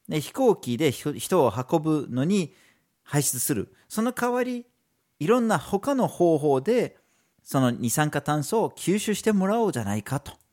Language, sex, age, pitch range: Japanese, male, 40-59, 120-195 Hz